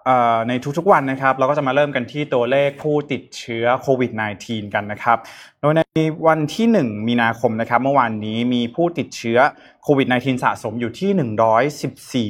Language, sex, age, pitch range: Thai, male, 20-39, 115-145 Hz